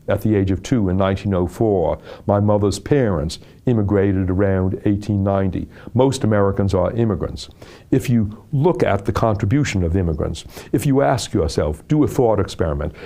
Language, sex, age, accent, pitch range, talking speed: English, male, 60-79, American, 100-120 Hz, 150 wpm